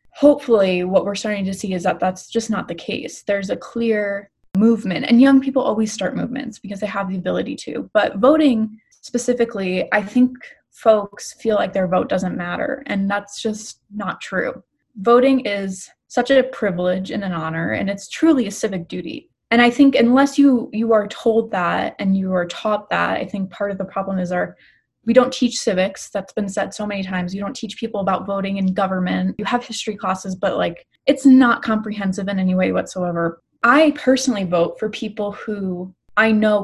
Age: 20-39